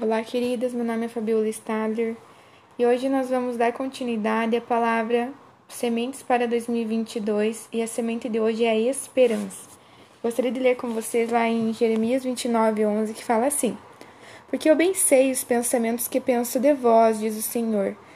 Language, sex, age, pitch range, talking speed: Portuguese, female, 20-39, 225-250 Hz, 170 wpm